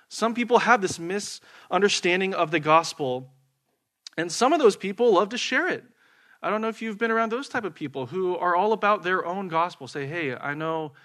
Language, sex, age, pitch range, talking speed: English, male, 20-39, 140-195 Hz, 210 wpm